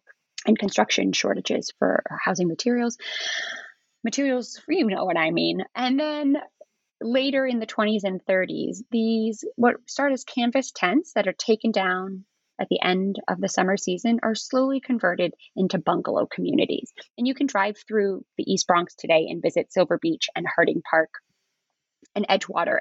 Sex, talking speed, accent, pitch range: female, 160 wpm, American, 190-265 Hz